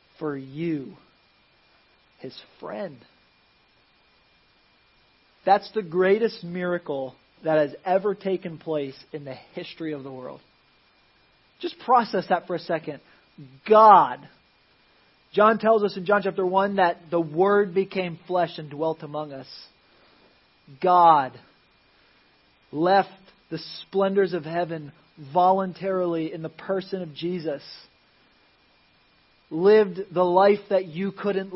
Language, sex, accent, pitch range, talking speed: English, male, American, 155-190 Hz, 115 wpm